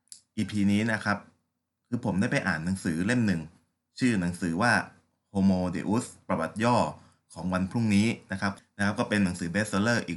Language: Thai